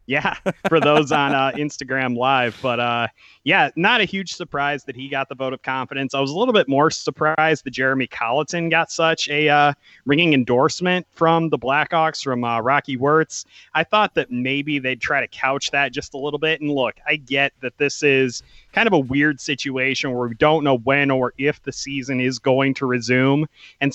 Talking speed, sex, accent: 210 wpm, male, American